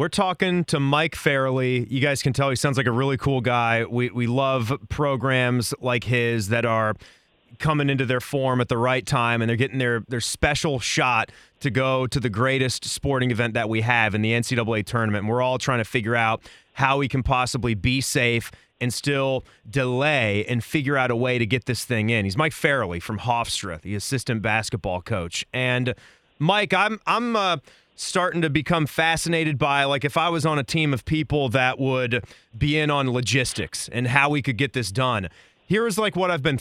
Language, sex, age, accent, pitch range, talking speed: English, male, 30-49, American, 120-155 Hz, 205 wpm